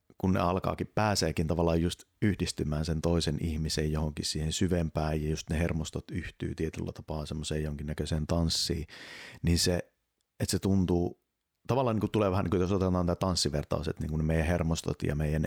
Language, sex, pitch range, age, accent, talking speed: Finnish, male, 75-90 Hz, 30-49, native, 175 wpm